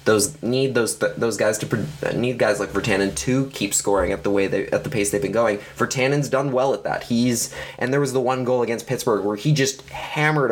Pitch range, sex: 115-145 Hz, male